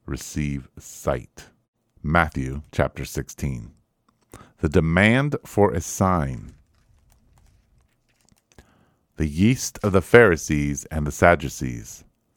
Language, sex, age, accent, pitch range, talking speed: English, male, 50-69, American, 75-105 Hz, 85 wpm